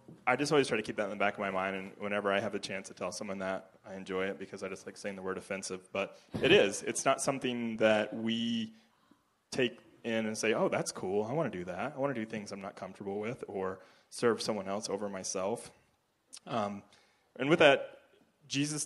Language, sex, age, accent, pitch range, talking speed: English, male, 20-39, American, 95-110 Hz, 235 wpm